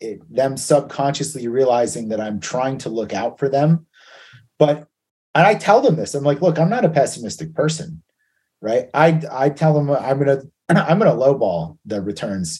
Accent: American